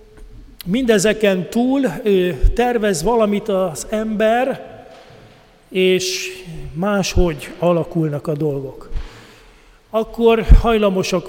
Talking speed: 70 wpm